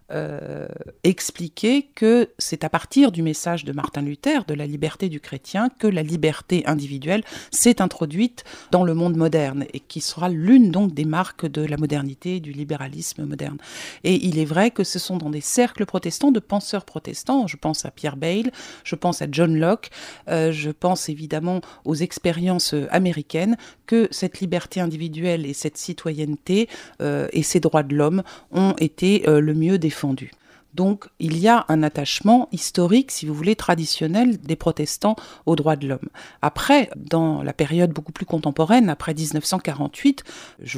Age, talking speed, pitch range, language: 50-69, 170 wpm, 150-190 Hz, French